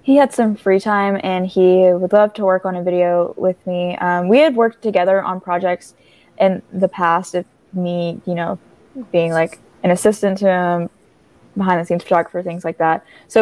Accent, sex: American, female